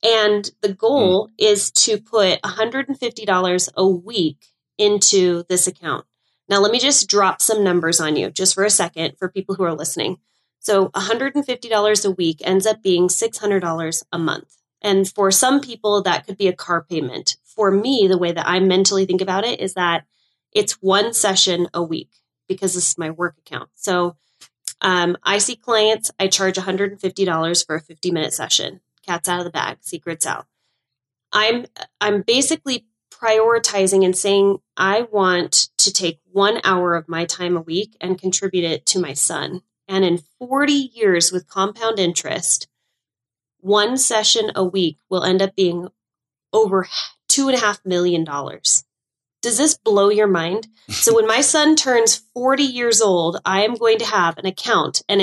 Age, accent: 20-39, American